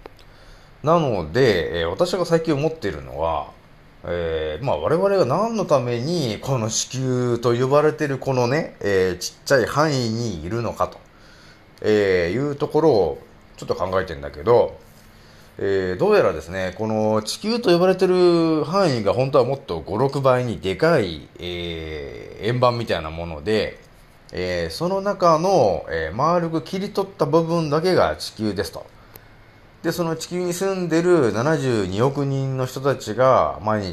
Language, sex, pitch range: Japanese, male, 95-160 Hz